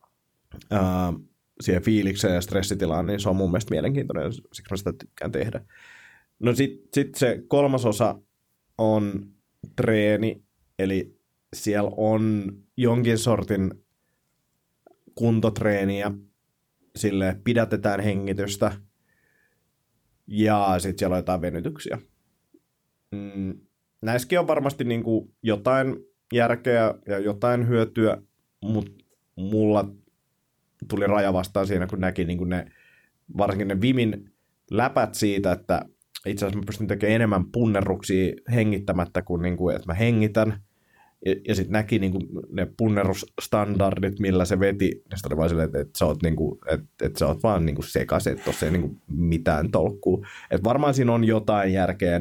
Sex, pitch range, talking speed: male, 95-110 Hz, 135 wpm